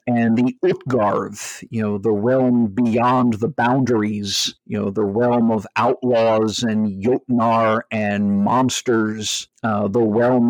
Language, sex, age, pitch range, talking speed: English, male, 50-69, 110-130 Hz, 130 wpm